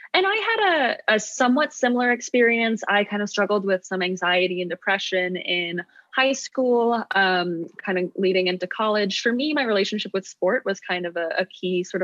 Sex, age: female, 20-39